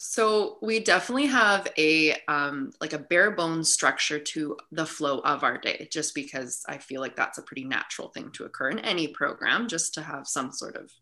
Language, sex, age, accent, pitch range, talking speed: English, female, 20-39, American, 155-220 Hz, 205 wpm